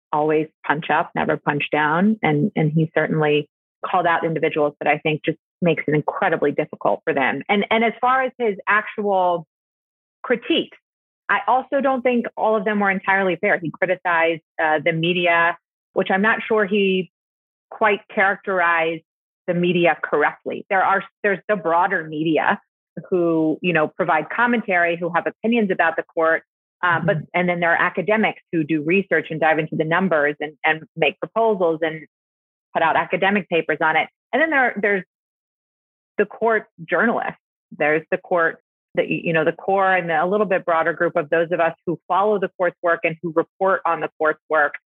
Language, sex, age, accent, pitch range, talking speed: English, female, 30-49, American, 160-195 Hz, 185 wpm